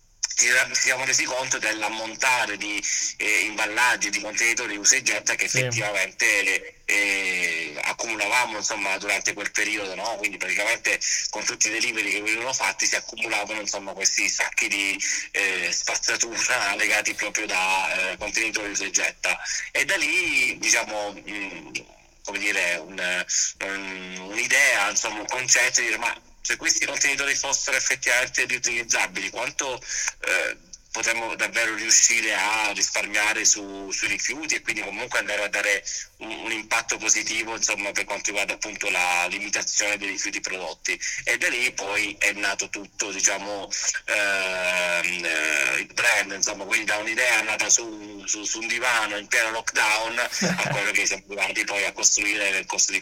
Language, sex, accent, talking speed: Italian, male, native, 155 wpm